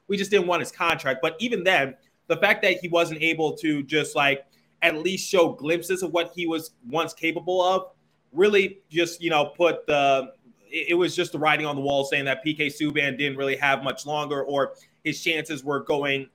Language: English